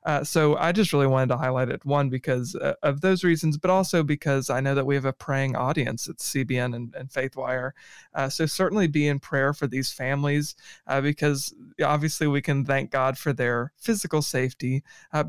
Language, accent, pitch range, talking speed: English, American, 135-150 Hz, 205 wpm